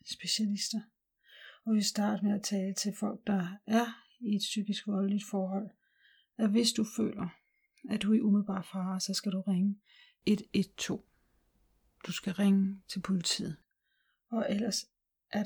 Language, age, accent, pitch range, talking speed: Danish, 40-59, native, 195-220 Hz, 150 wpm